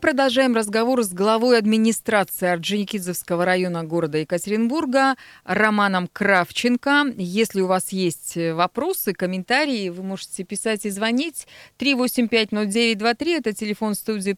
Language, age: Russian, 20-39